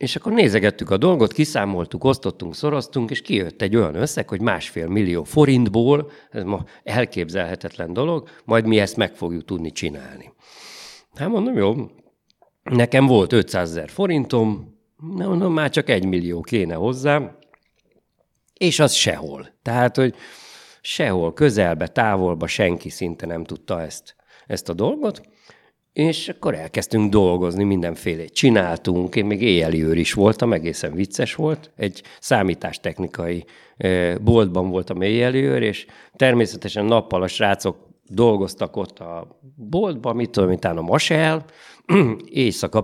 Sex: male